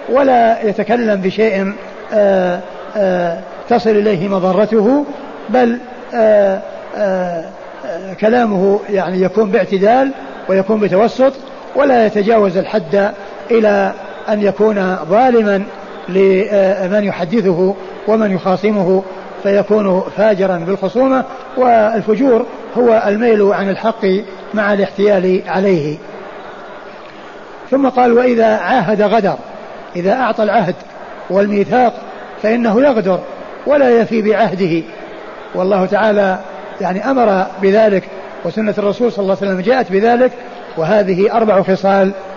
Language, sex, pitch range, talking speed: Arabic, male, 190-220 Hz, 90 wpm